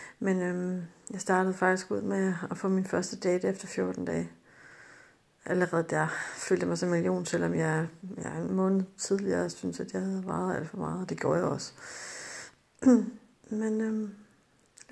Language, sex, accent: Danish, female, native